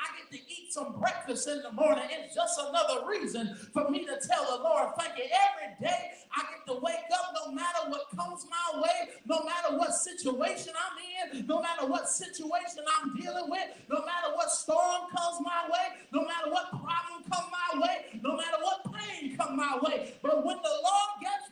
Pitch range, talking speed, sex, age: 290-360 Hz, 200 wpm, male, 30-49